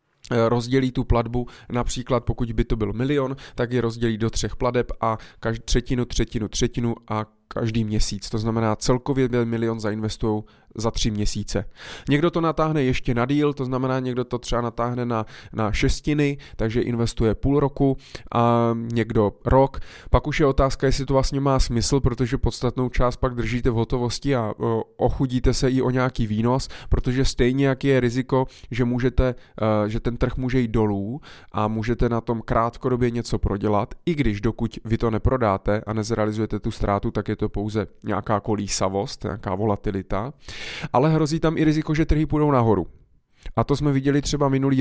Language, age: Czech, 20-39